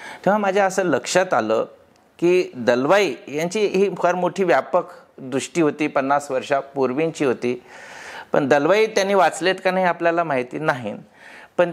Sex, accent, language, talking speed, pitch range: male, native, Marathi, 140 wpm, 150-185 Hz